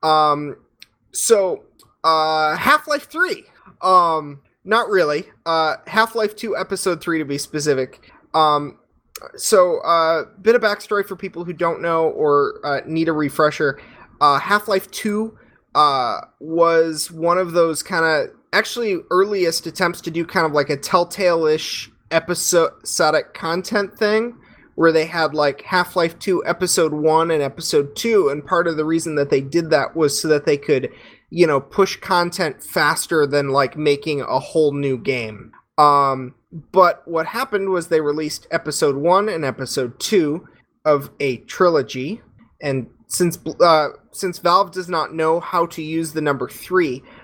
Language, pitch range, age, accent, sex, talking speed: English, 150-185 Hz, 20-39, American, male, 155 wpm